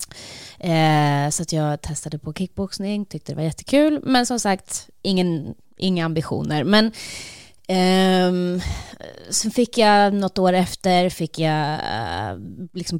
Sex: female